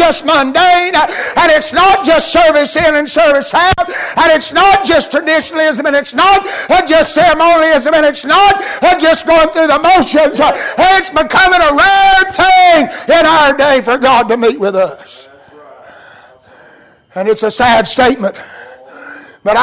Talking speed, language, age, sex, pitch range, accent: 150 wpm, English, 60-79, male, 275-320 Hz, American